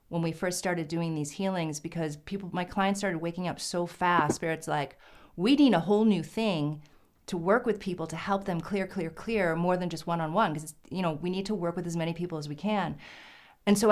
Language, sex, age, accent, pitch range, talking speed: English, female, 40-59, American, 175-225 Hz, 245 wpm